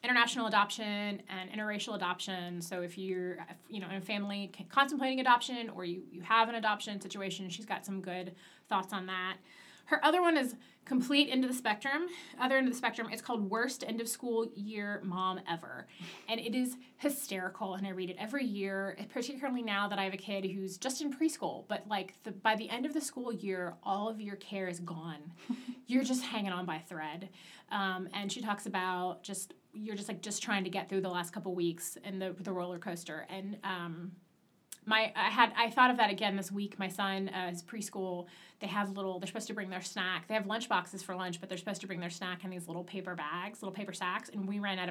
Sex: female